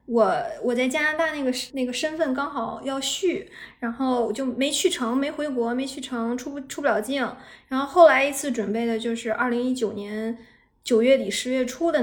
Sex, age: female, 20-39